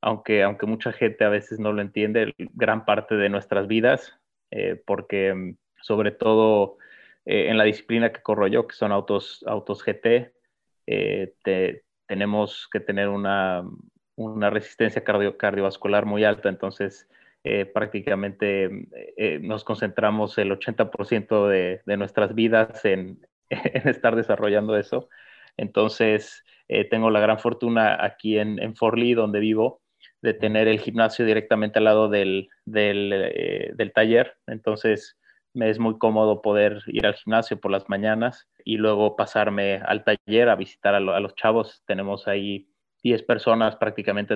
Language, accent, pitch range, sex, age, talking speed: Spanish, Mexican, 100-110 Hz, male, 20-39, 150 wpm